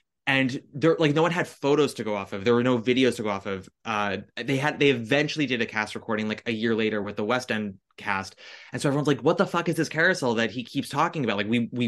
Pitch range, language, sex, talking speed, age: 110-145 Hz, English, male, 280 wpm, 20-39